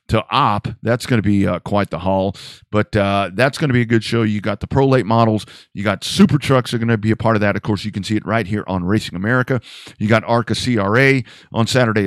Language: English